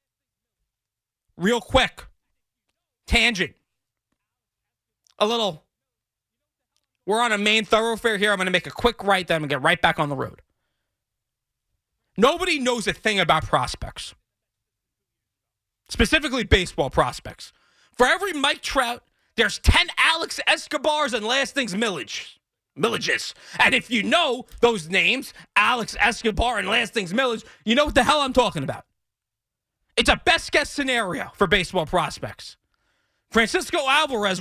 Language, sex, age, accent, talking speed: English, male, 30-49, American, 140 wpm